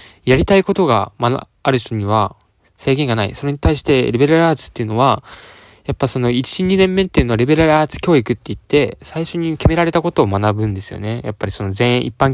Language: Japanese